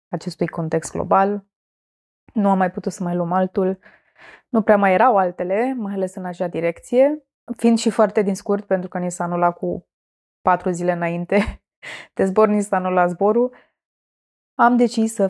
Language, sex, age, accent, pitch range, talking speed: Romanian, female, 20-39, native, 180-210 Hz, 175 wpm